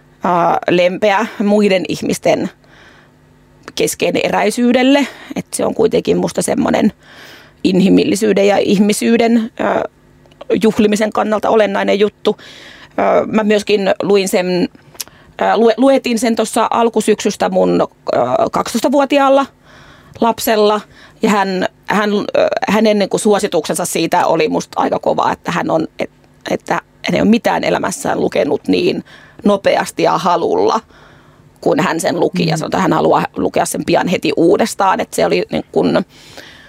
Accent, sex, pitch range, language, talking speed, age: native, female, 200-230 Hz, Finnish, 120 wpm, 30-49